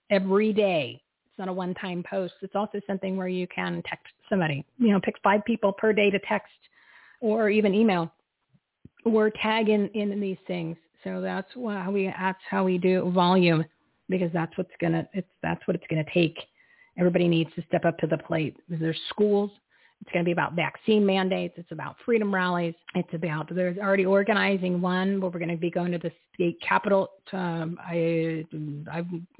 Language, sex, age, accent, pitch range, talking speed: English, female, 40-59, American, 170-195 Hz, 190 wpm